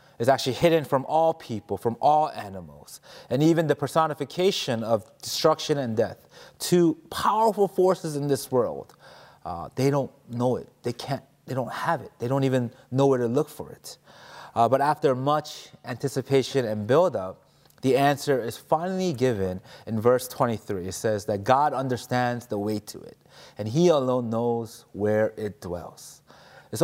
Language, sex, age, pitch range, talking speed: English, male, 30-49, 115-150 Hz, 170 wpm